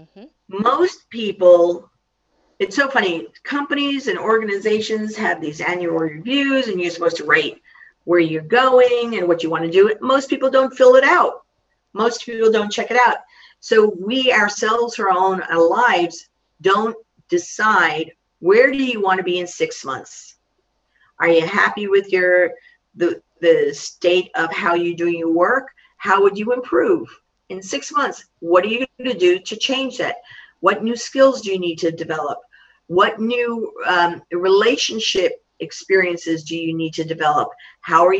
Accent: American